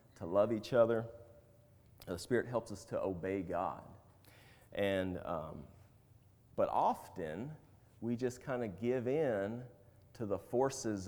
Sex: male